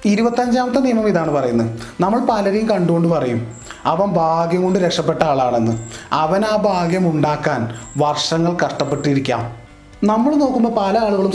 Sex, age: male, 30-49